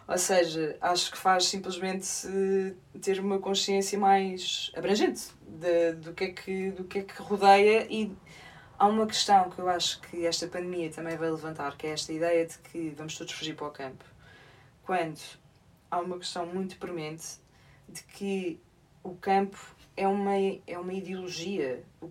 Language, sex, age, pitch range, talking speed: Portuguese, female, 20-39, 165-205 Hz, 165 wpm